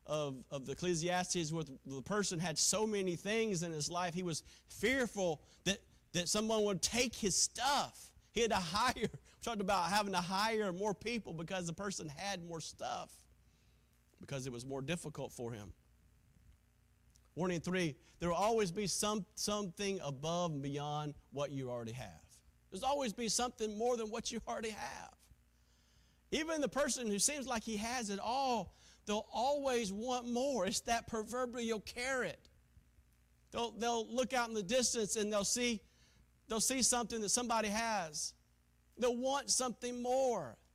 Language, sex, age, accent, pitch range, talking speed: English, male, 40-59, American, 150-225 Hz, 165 wpm